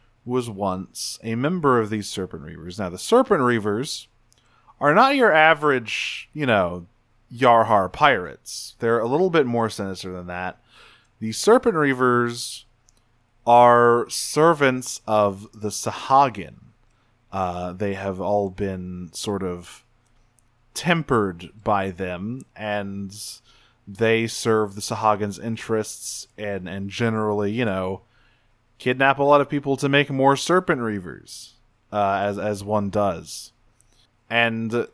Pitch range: 100-120 Hz